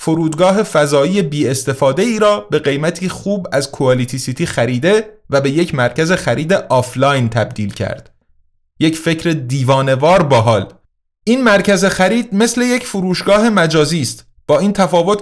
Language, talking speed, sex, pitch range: Persian, 145 wpm, male, 140-185 Hz